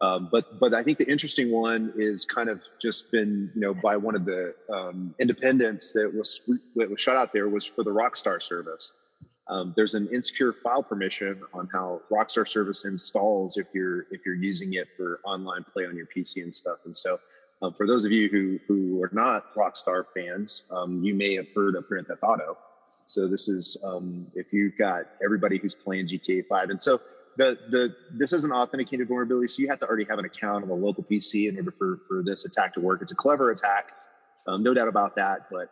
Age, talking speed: 30-49, 220 wpm